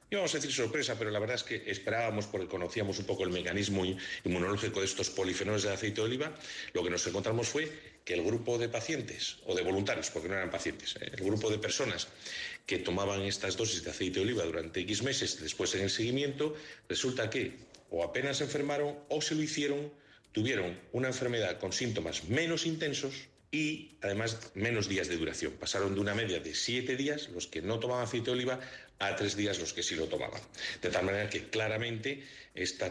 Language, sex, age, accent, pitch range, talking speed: Spanish, male, 40-59, Spanish, 100-130 Hz, 205 wpm